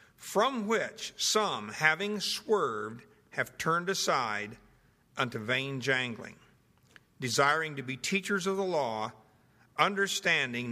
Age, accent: 60-79, American